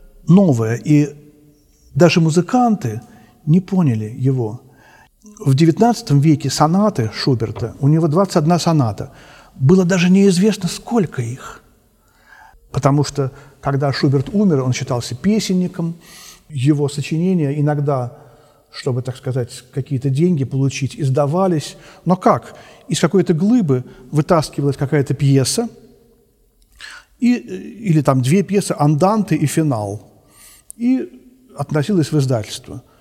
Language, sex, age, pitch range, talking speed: Russian, male, 40-59, 135-180 Hz, 105 wpm